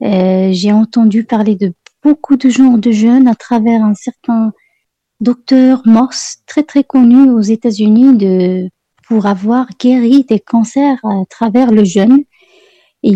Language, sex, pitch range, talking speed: French, female, 205-250 Hz, 150 wpm